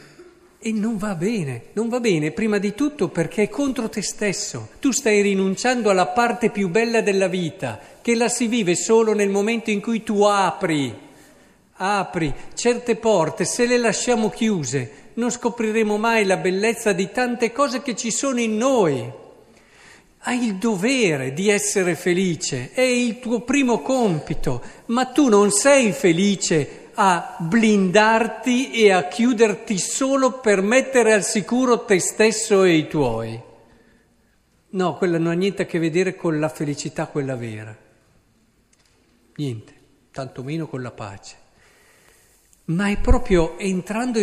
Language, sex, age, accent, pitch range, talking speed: Italian, male, 50-69, native, 175-235 Hz, 145 wpm